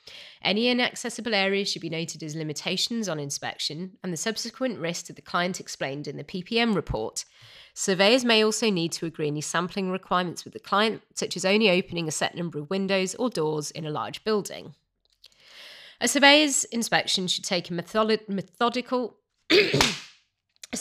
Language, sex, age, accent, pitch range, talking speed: English, female, 30-49, British, 165-215 Hz, 145 wpm